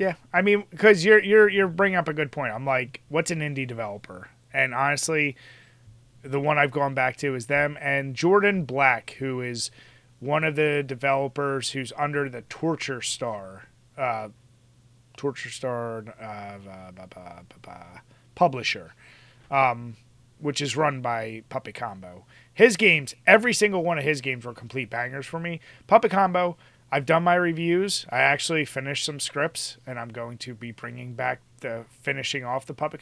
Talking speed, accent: 175 wpm, American